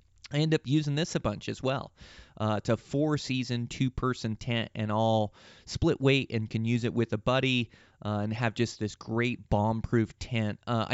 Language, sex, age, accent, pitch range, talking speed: English, male, 30-49, American, 105-120 Hz, 190 wpm